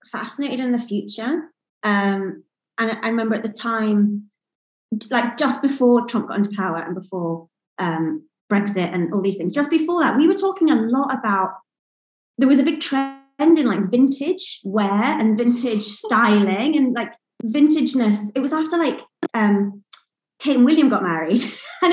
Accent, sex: British, female